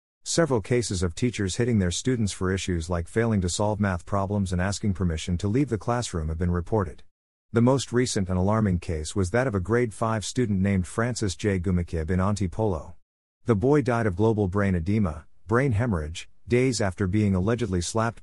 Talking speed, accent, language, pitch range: 190 wpm, American, English, 90-115 Hz